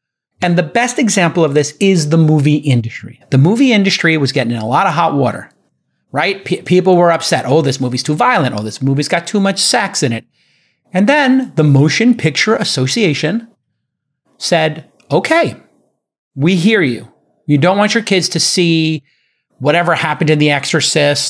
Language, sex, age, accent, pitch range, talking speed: English, male, 30-49, American, 150-190 Hz, 175 wpm